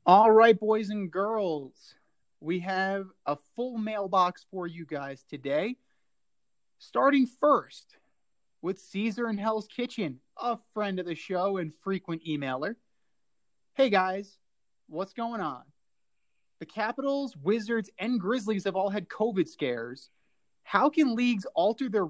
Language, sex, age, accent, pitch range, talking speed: English, male, 30-49, American, 160-220 Hz, 135 wpm